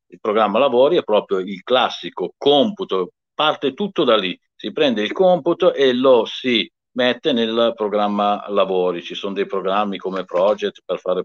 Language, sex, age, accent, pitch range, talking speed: Italian, male, 50-69, native, 90-135 Hz, 165 wpm